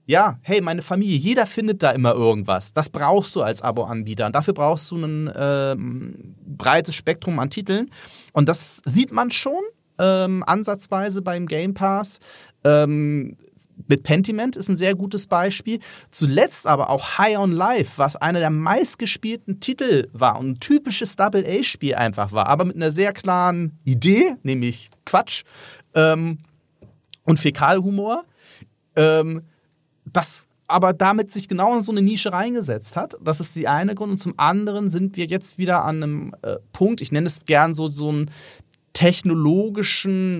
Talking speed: 160 wpm